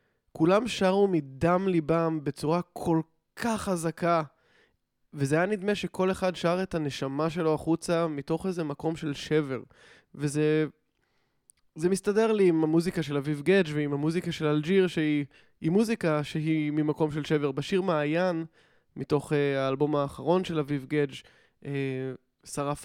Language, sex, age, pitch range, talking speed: English, male, 20-39, 145-170 Hz, 140 wpm